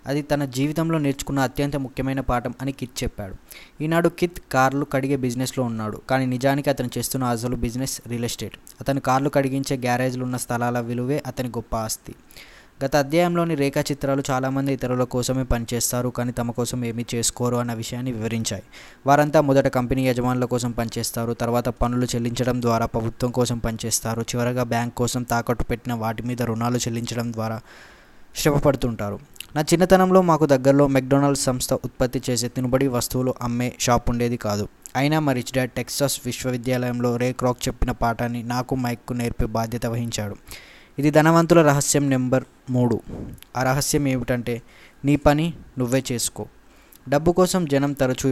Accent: native